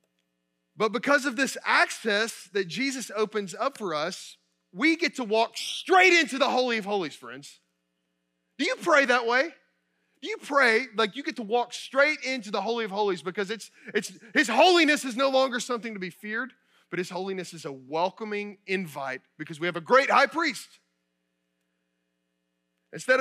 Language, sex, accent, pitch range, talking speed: English, male, American, 175-250 Hz, 175 wpm